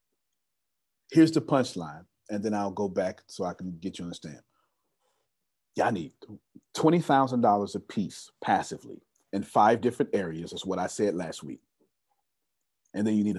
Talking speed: 160 wpm